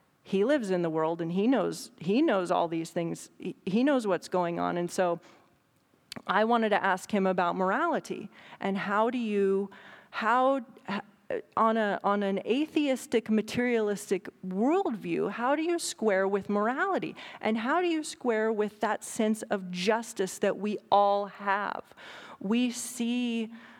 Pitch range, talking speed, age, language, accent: 190-235 Hz, 155 wpm, 40-59, English, American